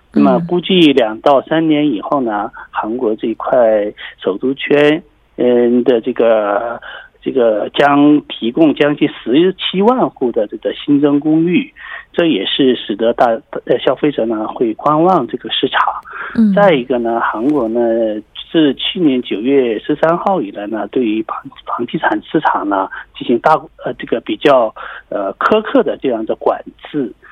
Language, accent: Korean, Chinese